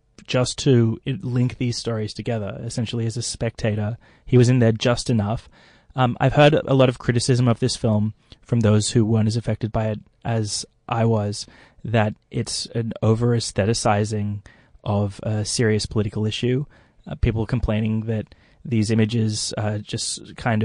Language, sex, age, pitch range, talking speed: English, male, 20-39, 110-120 Hz, 160 wpm